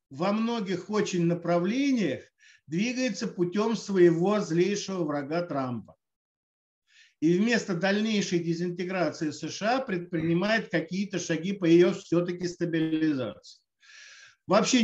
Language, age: Russian, 50-69